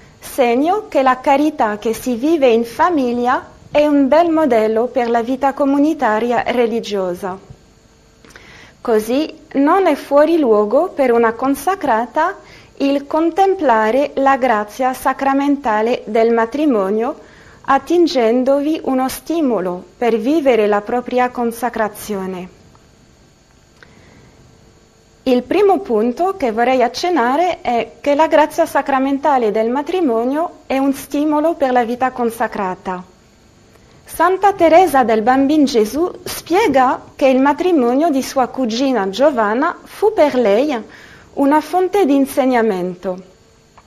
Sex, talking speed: female, 110 wpm